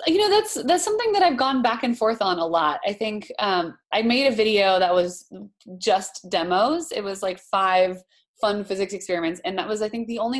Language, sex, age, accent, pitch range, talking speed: English, female, 20-39, American, 185-285 Hz, 225 wpm